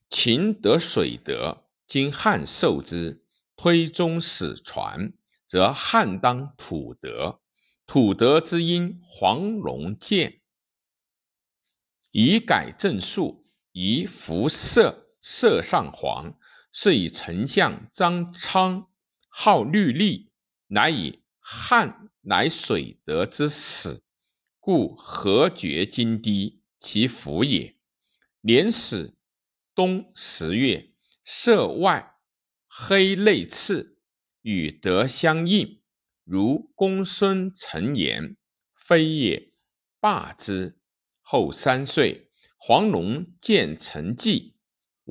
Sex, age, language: male, 50-69, Chinese